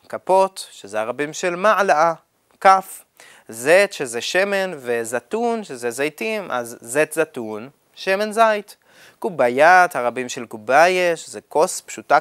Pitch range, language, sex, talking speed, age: 140-210 Hz, Hebrew, male, 120 wpm, 30-49